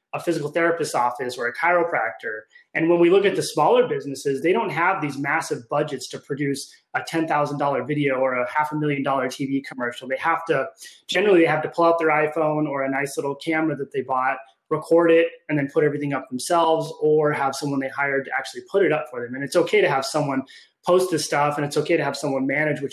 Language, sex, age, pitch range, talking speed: English, male, 20-39, 140-165 Hz, 235 wpm